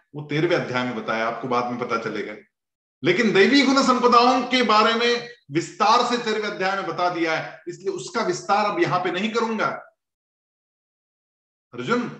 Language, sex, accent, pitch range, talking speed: Hindi, male, native, 140-205 Hz, 165 wpm